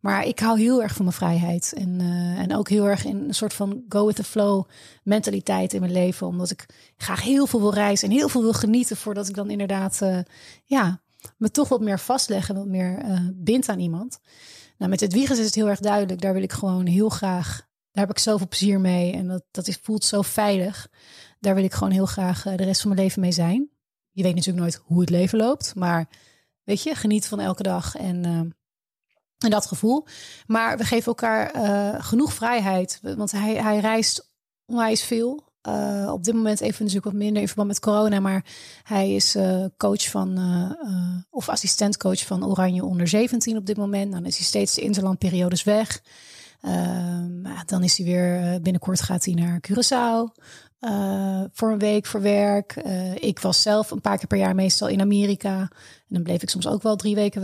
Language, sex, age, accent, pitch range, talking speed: Dutch, female, 30-49, Dutch, 180-215 Hz, 210 wpm